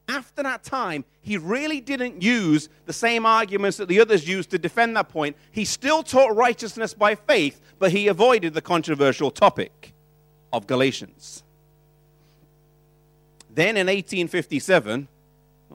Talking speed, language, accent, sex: 135 wpm, English, British, male